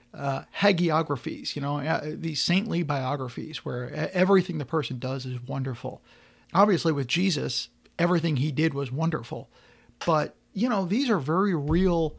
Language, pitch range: English, 140-180 Hz